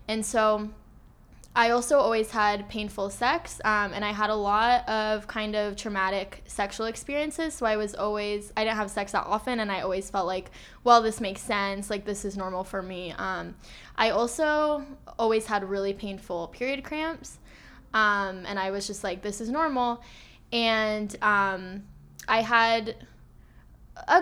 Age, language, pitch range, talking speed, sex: 10-29, English, 195-230 Hz, 170 wpm, female